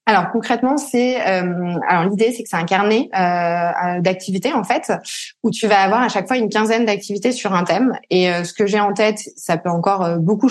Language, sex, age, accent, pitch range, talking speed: French, female, 20-39, French, 185-215 Hz, 225 wpm